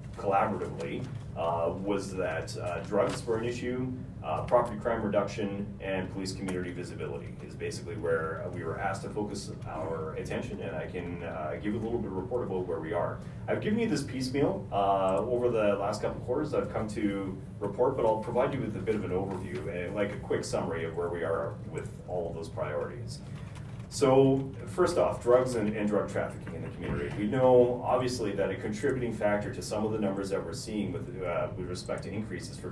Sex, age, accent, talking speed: male, 30-49, American, 205 wpm